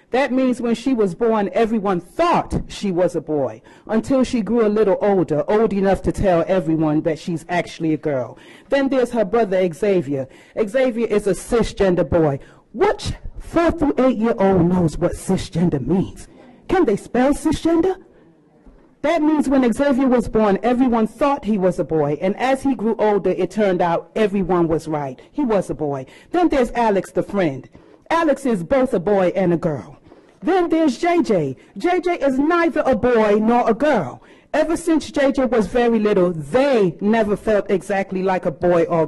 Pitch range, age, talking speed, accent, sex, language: 180-270 Hz, 40-59, 180 wpm, American, female, English